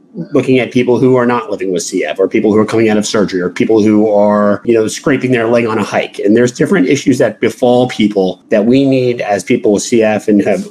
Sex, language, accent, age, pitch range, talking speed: male, English, American, 30-49, 105-125 Hz, 250 wpm